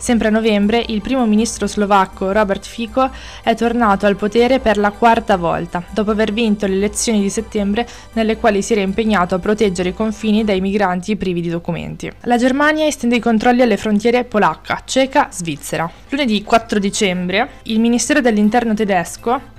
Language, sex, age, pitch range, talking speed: Italian, female, 20-39, 195-235 Hz, 170 wpm